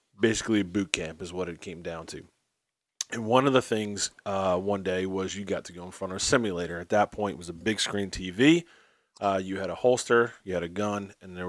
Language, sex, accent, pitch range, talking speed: English, male, American, 95-120 Hz, 250 wpm